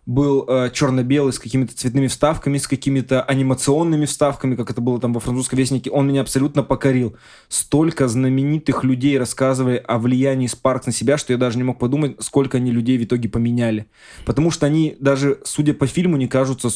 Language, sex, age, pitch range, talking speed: Russian, male, 20-39, 125-140 Hz, 185 wpm